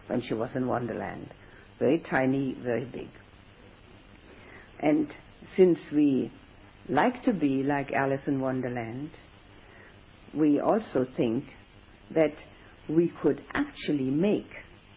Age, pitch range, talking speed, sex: 60-79, 100-165 Hz, 110 wpm, female